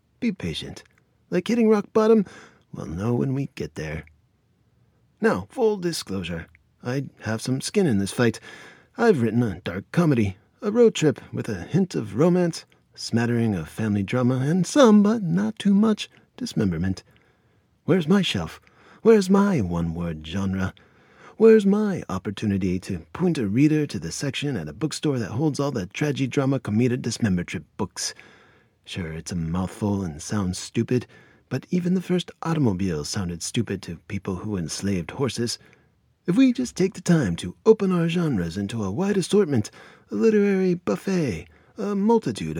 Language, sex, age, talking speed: English, male, 30-49, 160 wpm